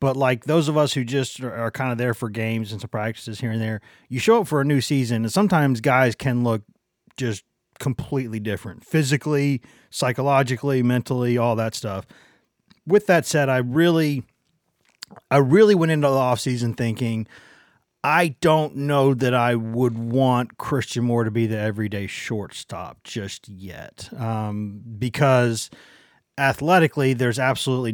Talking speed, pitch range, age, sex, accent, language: 160 wpm, 115-135 Hz, 30-49, male, American, English